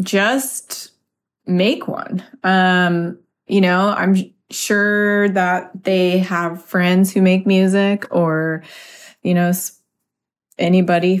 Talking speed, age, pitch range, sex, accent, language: 100 wpm, 20-39, 175-205 Hz, female, American, English